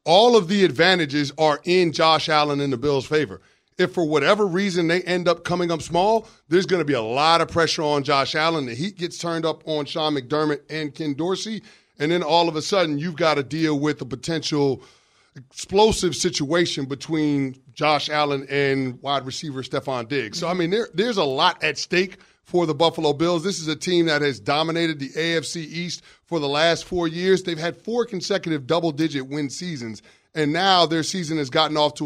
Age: 30-49